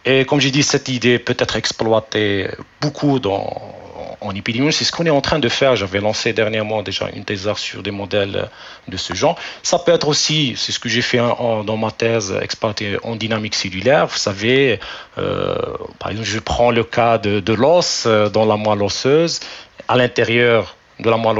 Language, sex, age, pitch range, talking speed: French, male, 40-59, 105-130 Hz, 200 wpm